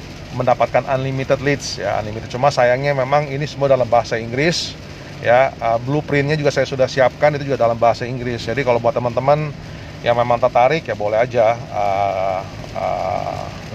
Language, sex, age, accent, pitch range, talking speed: Indonesian, male, 30-49, native, 120-145 Hz, 155 wpm